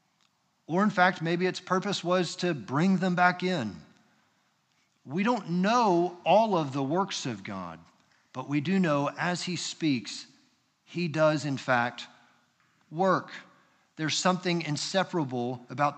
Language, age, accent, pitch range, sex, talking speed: English, 40-59, American, 155-195 Hz, male, 140 wpm